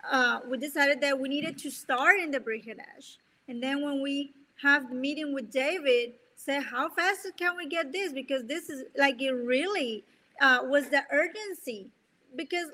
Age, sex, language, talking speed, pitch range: 30-49, female, English, 180 wpm, 255-325 Hz